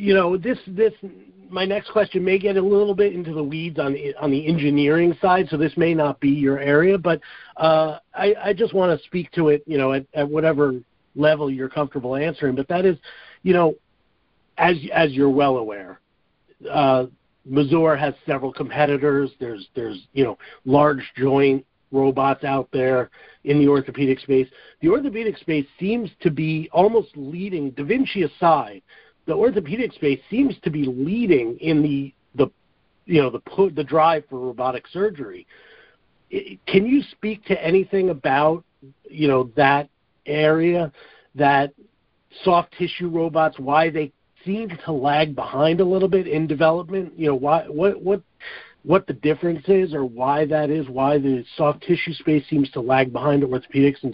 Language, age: English, 50-69